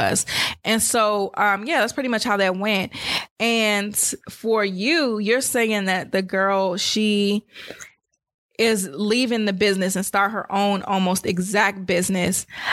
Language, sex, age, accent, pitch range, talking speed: English, female, 20-39, American, 195-235 Hz, 145 wpm